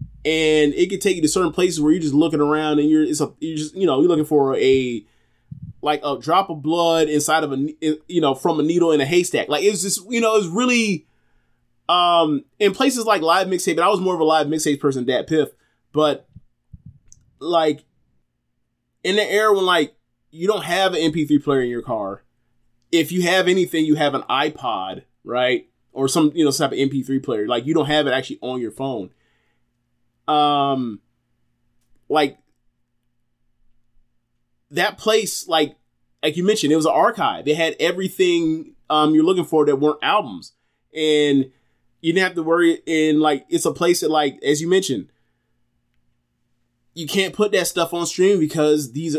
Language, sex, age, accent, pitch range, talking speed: English, male, 20-39, American, 135-170 Hz, 190 wpm